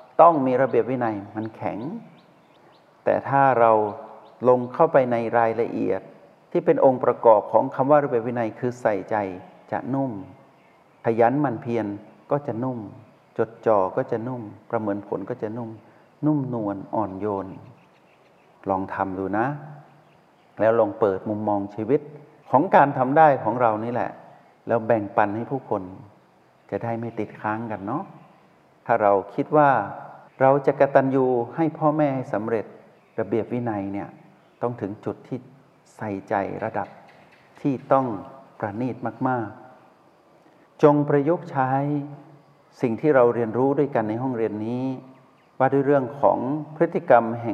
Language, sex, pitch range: Thai, male, 105-135 Hz